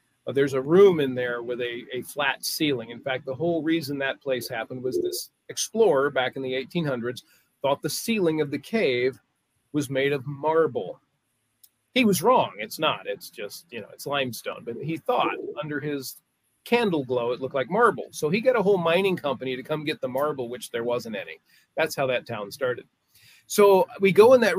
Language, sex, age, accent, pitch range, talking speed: English, male, 40-59, American, 130-185 Hz, 205 wpm